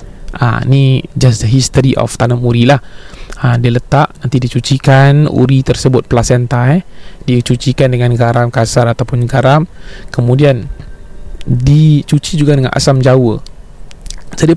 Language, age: Malay, 20-39